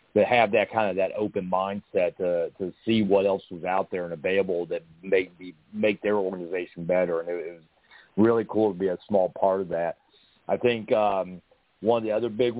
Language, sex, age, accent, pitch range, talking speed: English, male, 40-59, American, 95-115 Hz, 210 wpm